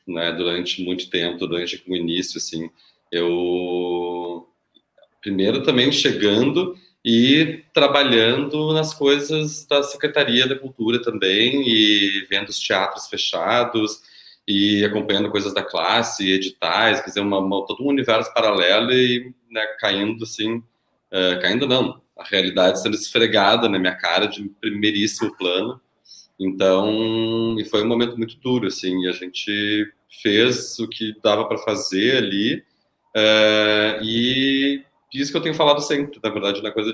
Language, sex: Portuguese, male